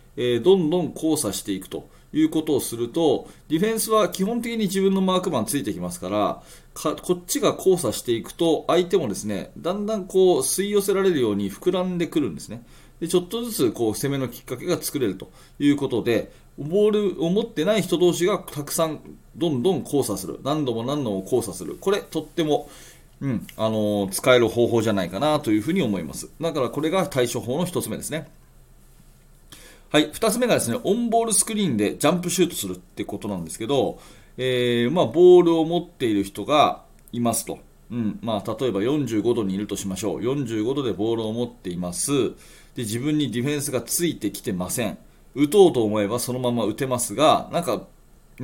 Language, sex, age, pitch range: Japanese, male, 30-49, 115-190 Hz